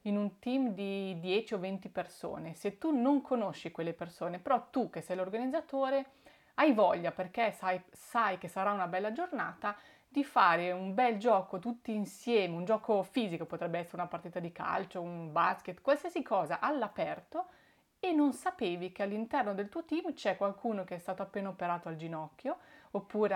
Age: 30-49